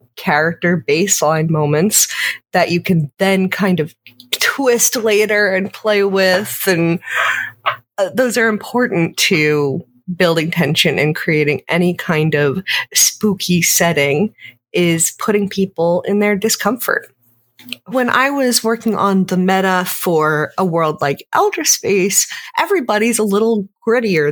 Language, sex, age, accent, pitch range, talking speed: English, female, 30-49, American, 175-245 Hz, 125 wpm